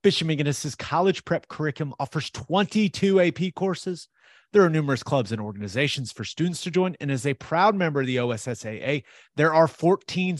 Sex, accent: male, American